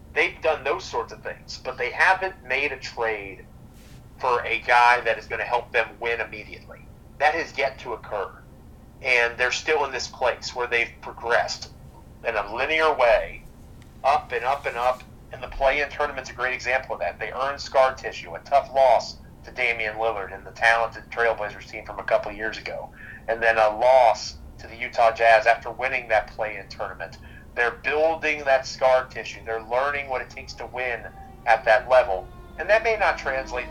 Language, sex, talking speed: English, male, 200 wpm